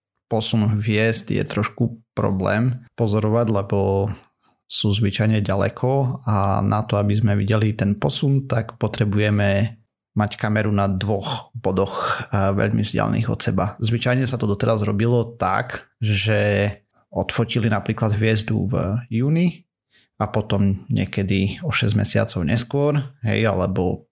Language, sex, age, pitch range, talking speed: Slovak, male, 30-49, 105-120 Hz, 125 wpm